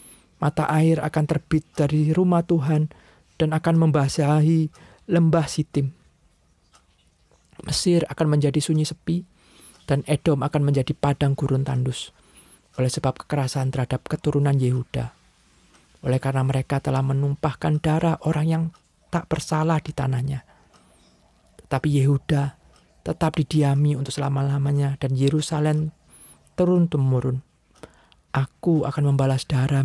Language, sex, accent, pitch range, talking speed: Indonesian, male, native, 135-155 Hz, 110 wpm